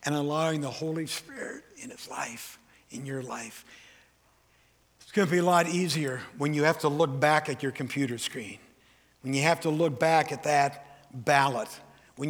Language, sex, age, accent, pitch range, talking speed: English, male, 60-79, American, 120-170 Hz, 185 wpm